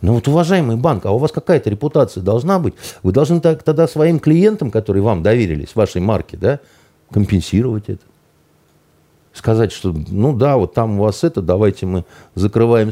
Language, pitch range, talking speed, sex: Russian, 90-130 Hz, 165 wpm, male